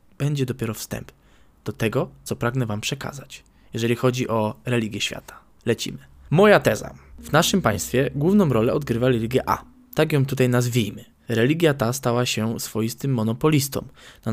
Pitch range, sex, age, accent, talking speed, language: 115-150 Hz, male, 20-39, native, 150 wpm, Polish